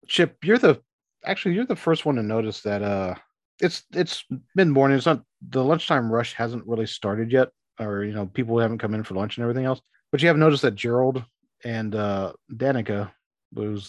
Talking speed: 205 wpm